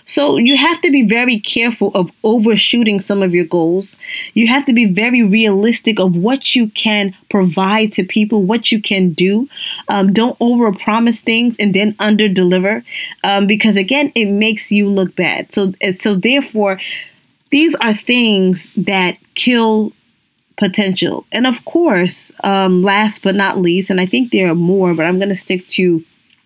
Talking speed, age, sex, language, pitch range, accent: 170 wpm, 20-39, female, English, 195-255 Hz, American